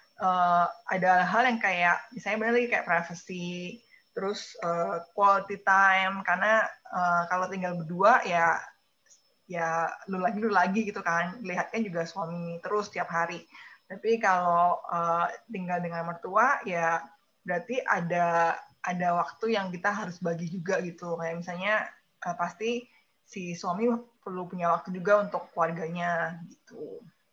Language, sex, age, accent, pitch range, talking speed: Indonesian, female, 20-39, native, 170-205 Hz, 140 wpm